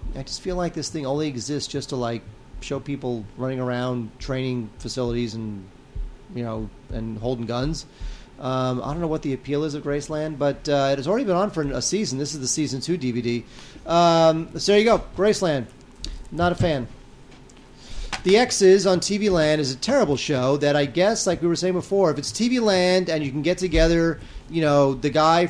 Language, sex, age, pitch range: English, male, 30-49, 130-170 Hz